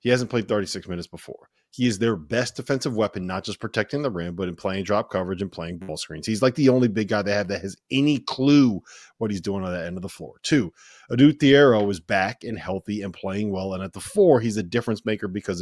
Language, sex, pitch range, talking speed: English, male, 95-115 Hz, 255 wpm